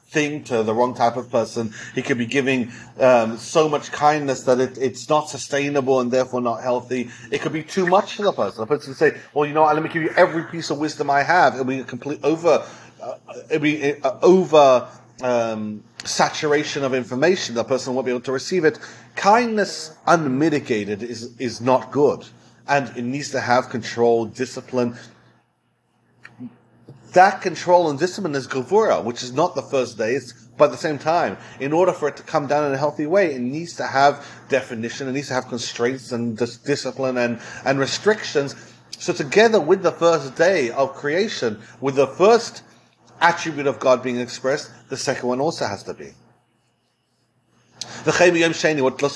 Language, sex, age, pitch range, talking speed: English, male, 40-59, 125-155 Hz, 185 wpm